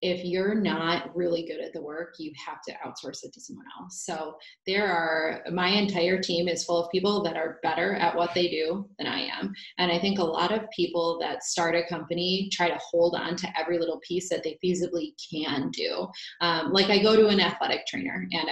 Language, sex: English, female